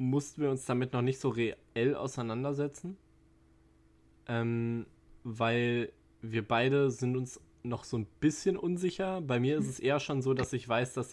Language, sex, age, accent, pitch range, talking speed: German, male, 20-39, German, 110-130 Hz, 165 wpm